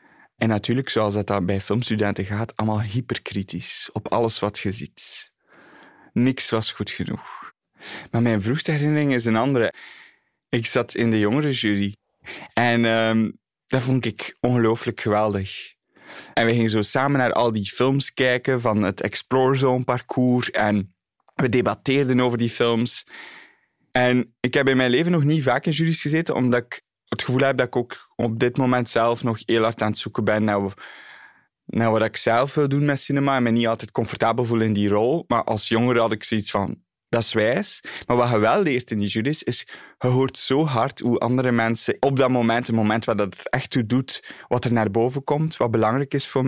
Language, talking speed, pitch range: Dutch, 195 wpm, 110-130 Hz